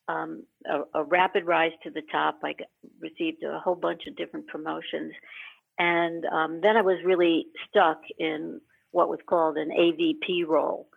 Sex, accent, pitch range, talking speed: female, American, 160-185 Hz, 165 wpm